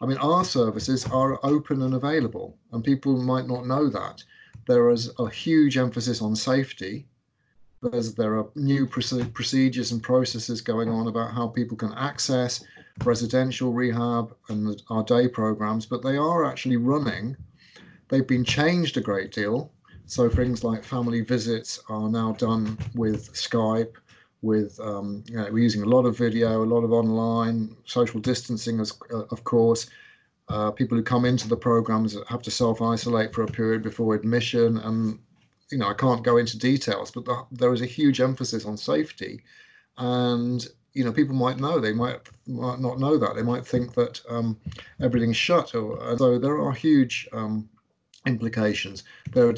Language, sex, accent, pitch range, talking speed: English, male, British, 110-125 Hz, 170 wpm